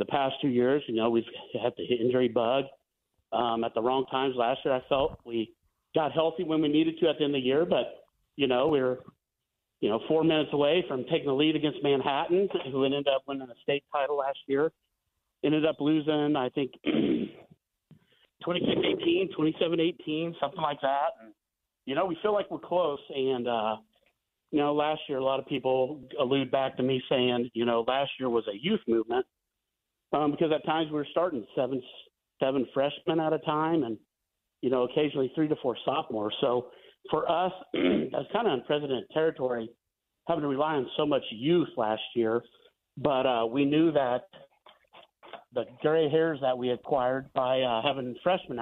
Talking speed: 190 wpm